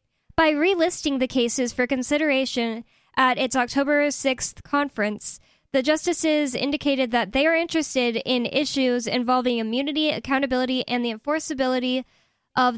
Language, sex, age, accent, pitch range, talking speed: English, female, 10-29, American, 235-295 Hz, 125 wpm